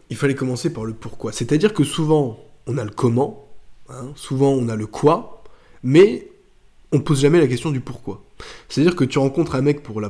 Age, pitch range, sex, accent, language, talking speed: 20-39, 110-140 Hz, male, French, French, 215 wpm